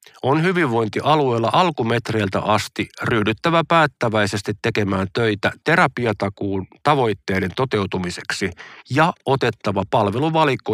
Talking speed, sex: 80 wpm, male